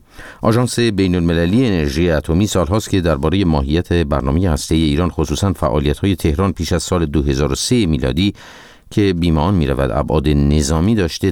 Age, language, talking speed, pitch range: 50-69, Persian, 155 wpm, 75-100 Hz